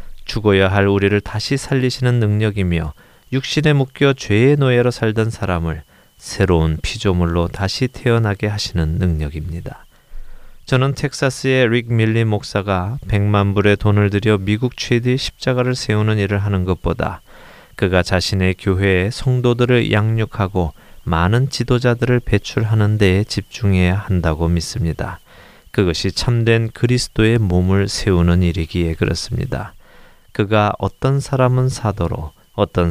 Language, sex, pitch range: Korean, male, 90-120 Hz